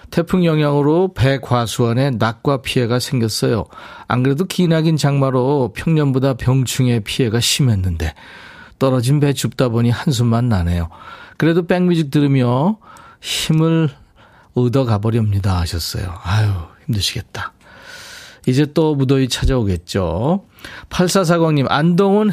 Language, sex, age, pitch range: Korean, male, 40-59, 110-160 Hz